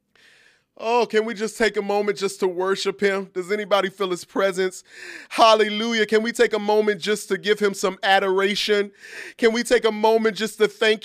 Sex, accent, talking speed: male, American, 195 wpm